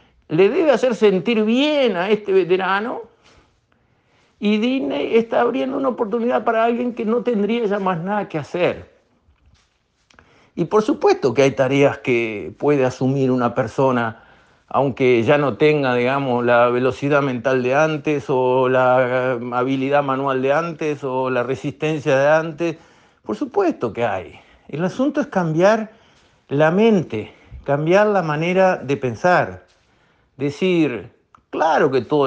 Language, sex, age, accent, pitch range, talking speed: Spanish, male, 50-69, Argentinian, 135-225 Hz, 140 wpm